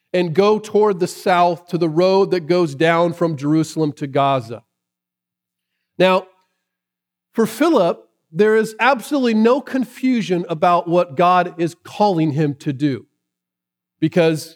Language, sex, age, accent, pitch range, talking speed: English, male, 40-59, American, 130-200 Hz, 130 wpm